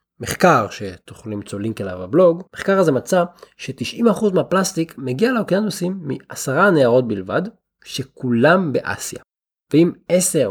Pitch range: 120-180 Hz